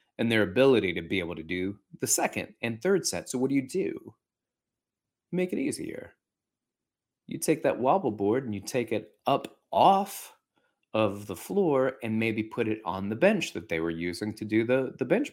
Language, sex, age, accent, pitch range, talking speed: English, male, 30-49, American, 100-130 Hz, 200 wpm